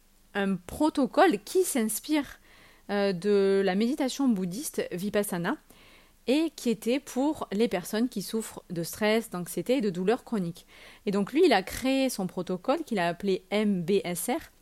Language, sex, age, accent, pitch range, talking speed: French, female, 30-49, French, 185-255 Hz, 150 wpm